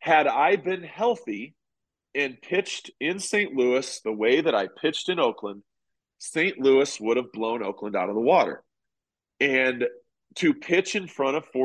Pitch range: 125-180 Hz